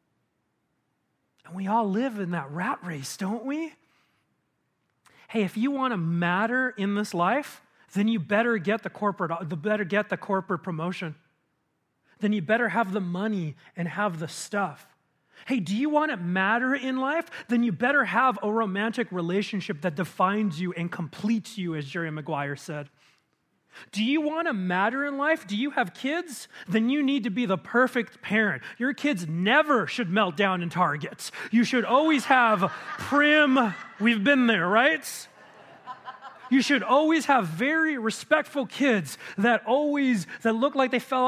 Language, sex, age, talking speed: English, male, 30-49, 165 wpm